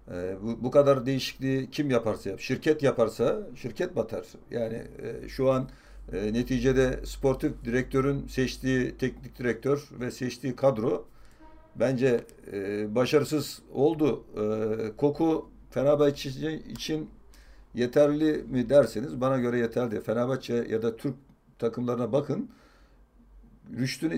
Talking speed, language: 120 wpm, Turkish